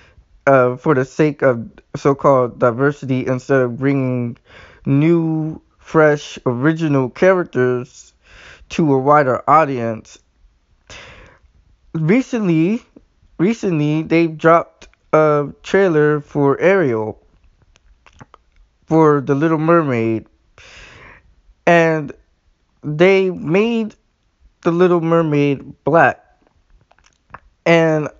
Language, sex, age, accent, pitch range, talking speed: English, male, 20-39, American, 130-180 Hz, 80 wpm